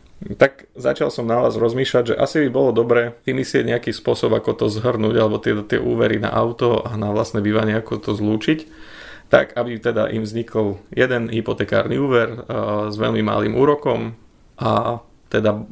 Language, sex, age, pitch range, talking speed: Slovak, male, 30-49, 105-115 Hz, 170 wpm